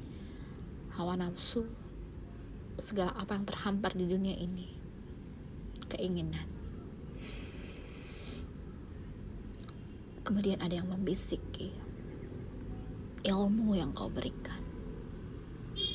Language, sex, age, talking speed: Indonesian, female, 20-39, 65 wpm